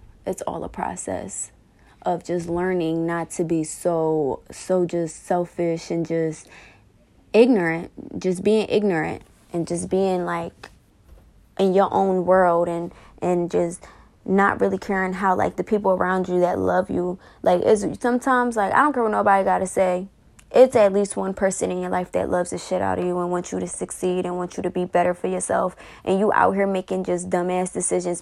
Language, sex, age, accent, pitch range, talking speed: English, female, 10-29, American, 175-210 Hz, 195 wpm